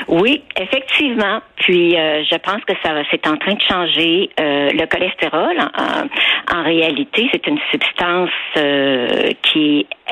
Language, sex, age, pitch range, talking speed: French, female, 60-79, 155-220 Hz, 150 wpm